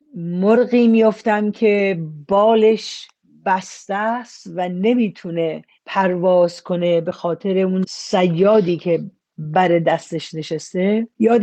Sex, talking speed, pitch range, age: female, 100 wpm, 175-215 Hz, 40-59